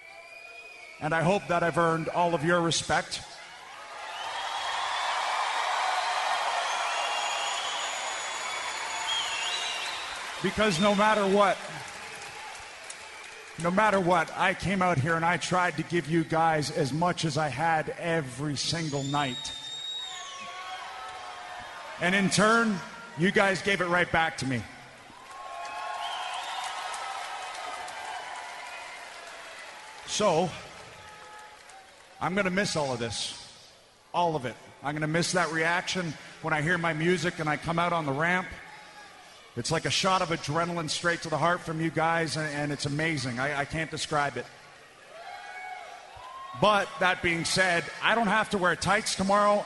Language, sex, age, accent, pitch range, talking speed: English, male, 40-59, American, 155-185 Hz, 130 wpm